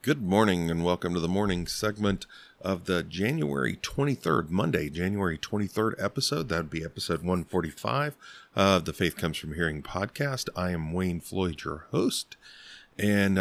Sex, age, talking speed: male, 40-59, 150 wpm